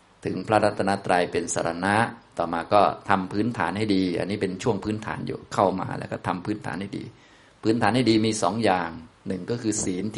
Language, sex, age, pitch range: Thai, male, 20-39, 95-120 Hz